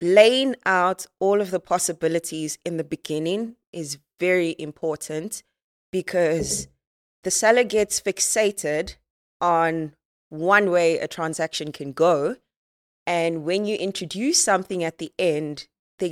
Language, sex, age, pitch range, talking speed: English, female, 20-39, 155-185 Hz, 125 wpm